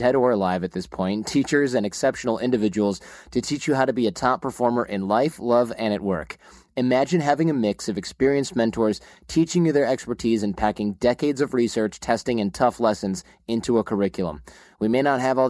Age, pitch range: 30-49, 105-130 Hz